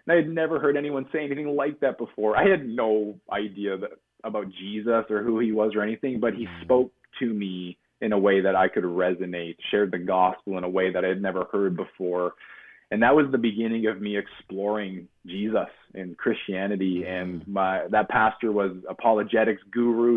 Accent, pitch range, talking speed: American, 95-115 Hz, 195 wpm